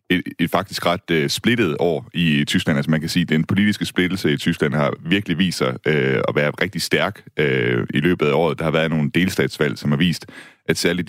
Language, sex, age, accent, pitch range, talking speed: Danish, male, 30-49, native, 70-85 Hz, 235 wpm